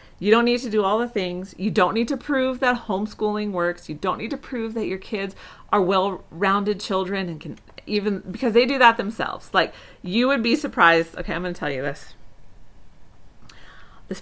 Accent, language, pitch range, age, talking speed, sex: American, English, 165-225 Hz, 40-59, 200 wpm, female